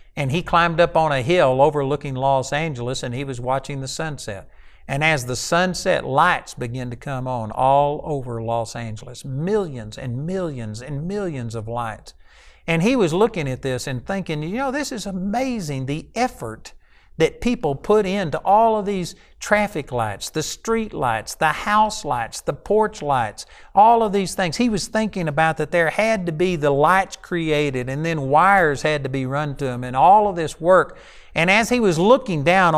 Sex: male